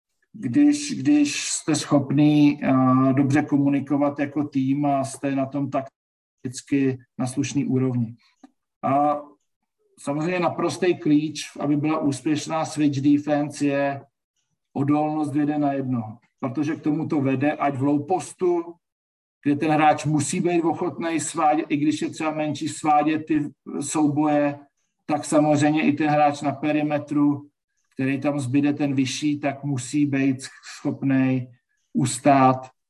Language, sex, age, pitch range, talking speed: Slovak, male, 50-69, 135-155 Hz, 130 wpm